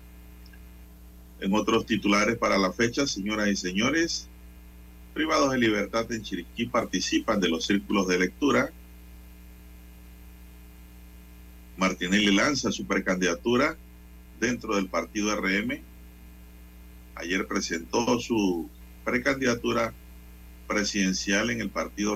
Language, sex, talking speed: Spanish, male, 100 wpm